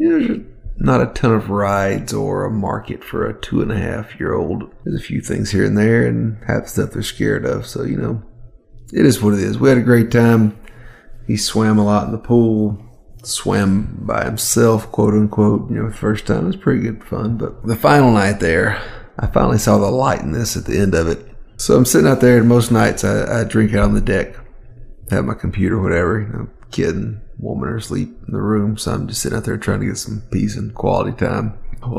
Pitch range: 100-120 Hz